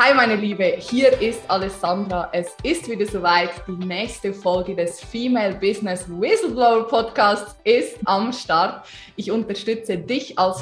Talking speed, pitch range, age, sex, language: 140 wpm, 180-235 Hz, 20-39, female, German